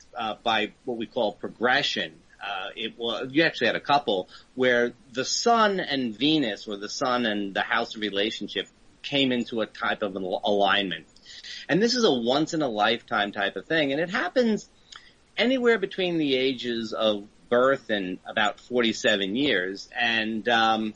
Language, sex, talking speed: English, male, 170 wpm